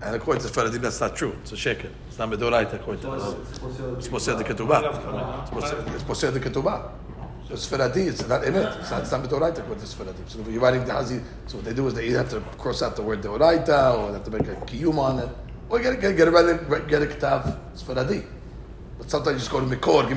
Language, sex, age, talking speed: English, male, 40-59, 230 wpm